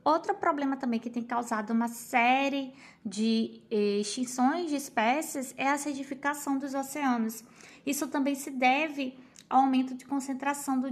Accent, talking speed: Brazilian, 145 wpm